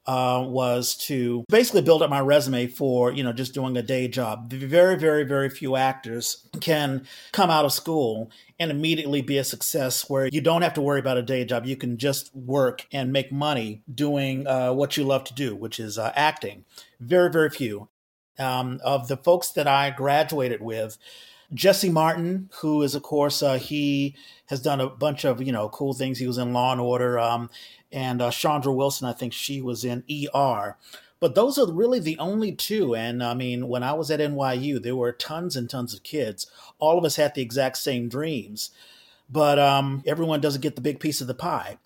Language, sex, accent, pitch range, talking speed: English, male, American, 125-155 Hz, 210 wpm